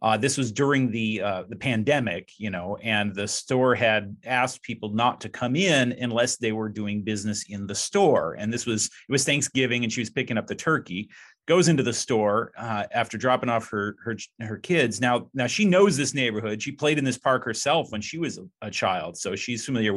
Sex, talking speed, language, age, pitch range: male, 220 wpm, English, 40-59, 115-145 Hz